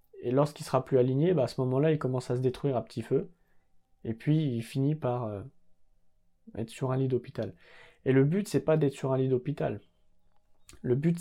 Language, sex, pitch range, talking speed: French, male, 115-145 Hz, 215 wpm